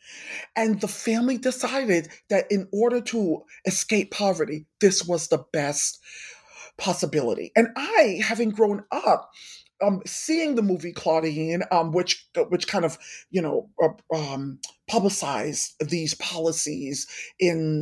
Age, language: 40-59, English